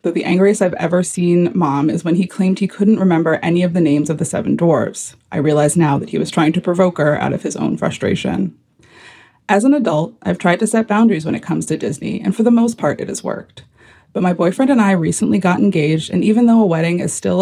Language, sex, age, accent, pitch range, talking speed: English, female, 20-39, American, 160-205 Hz, 250 wpm